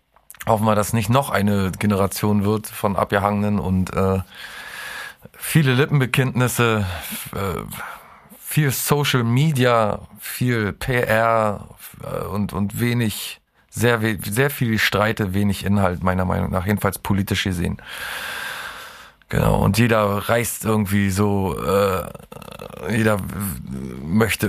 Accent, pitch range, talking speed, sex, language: German, 95-110 Hz, 120 wpm, male, German